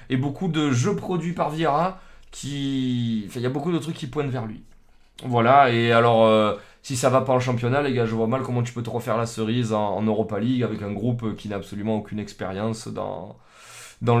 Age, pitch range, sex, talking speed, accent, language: 20-39, 115-150 Hz, male, 235 wpm, French, French